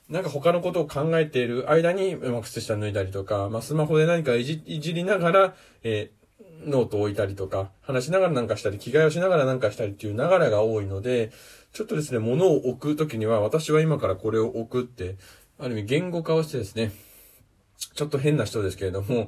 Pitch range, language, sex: 100-150 Hz, Japanese, male